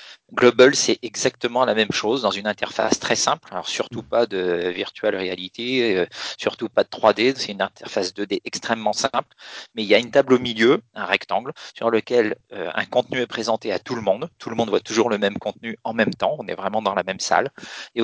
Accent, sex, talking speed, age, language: French, male, 225 wpm, 40-59, French